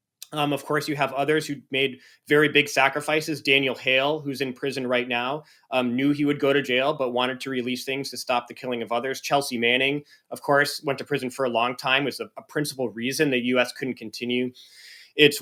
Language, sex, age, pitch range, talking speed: English, male, 20-39, 130-165 Hz, 220 wpm